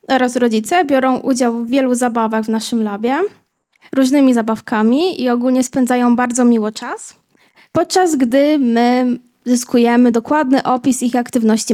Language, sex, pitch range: Polish, female, 245-280 Hz